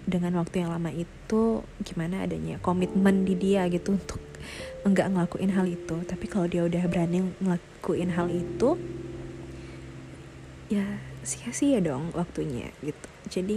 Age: 20-39